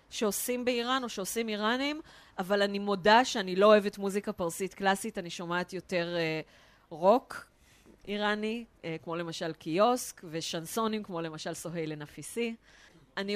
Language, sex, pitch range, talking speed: Hebrew, female, 185-235 Hz, 135 wpm